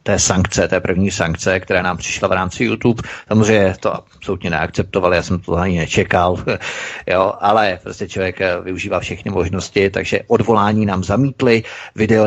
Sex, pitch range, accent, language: male, 95-115 Hz, native, Czech